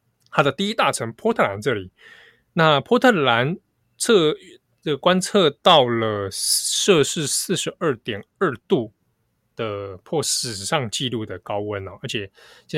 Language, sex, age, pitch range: Chinese, male, 20-39, 110-145 Hz